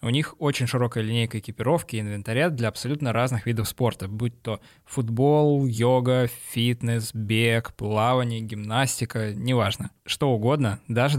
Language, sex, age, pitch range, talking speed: Russian, male, 20-39, 110-135 Hz, 135 wpm